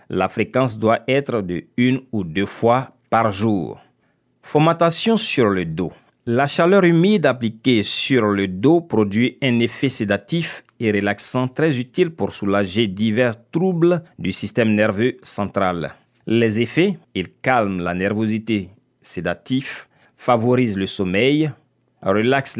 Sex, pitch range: male, 100-135 Hz